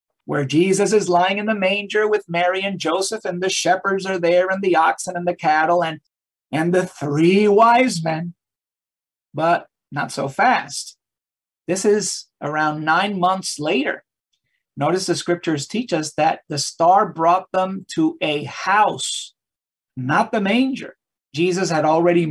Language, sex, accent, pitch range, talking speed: English, male, American, 155-200 Hz, 155 wpm